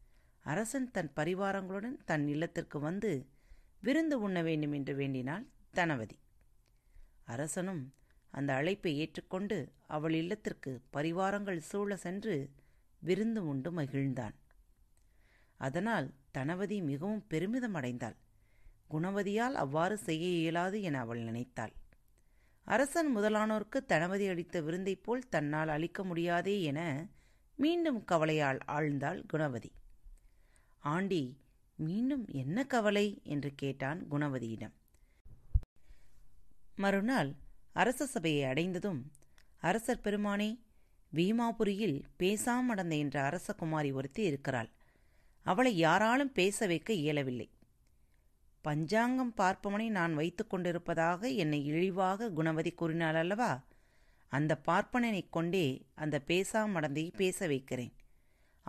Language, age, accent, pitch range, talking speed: Tamil, 30-49, native, 140-205 Hz, 85 wpm